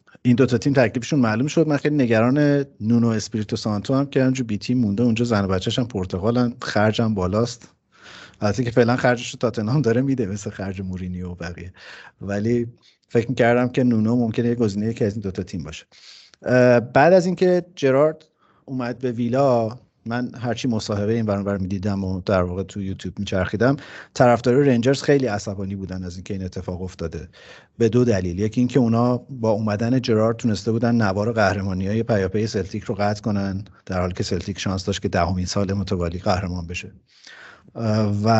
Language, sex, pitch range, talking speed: Persian, male, 100-120 Hz, 185 wpm